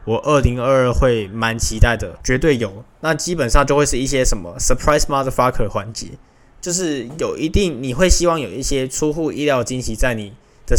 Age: 20-39